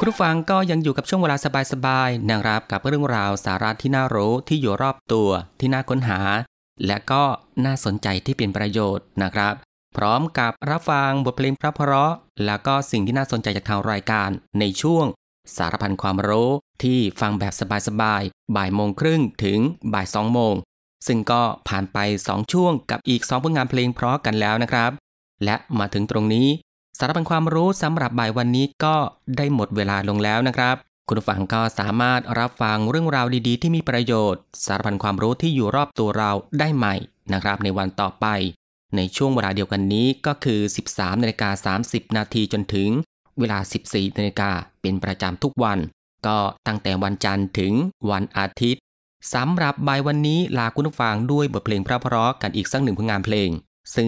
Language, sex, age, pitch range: Thai, male, 20-39, 100-135 Hz